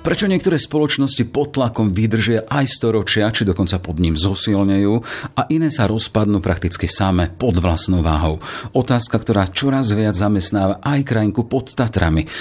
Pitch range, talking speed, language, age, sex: 90-115 Hz, 150 wpm, Slovak, 50-69, male